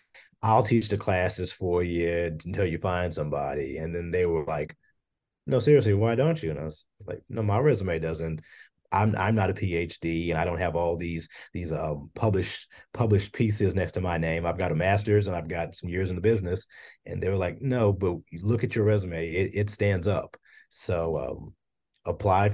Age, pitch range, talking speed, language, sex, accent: 30-49, 85-105 Hz, 205 wpm, English, male, American